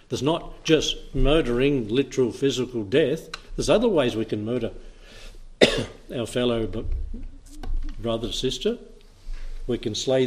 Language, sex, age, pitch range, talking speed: English, male, 60-79, 110-145 Hz, 115 wpm